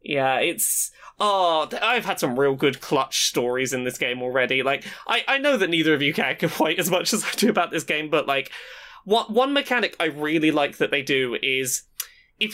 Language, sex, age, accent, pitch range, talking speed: English, male, 20-39, British, 155-215 Hz, 210 wpm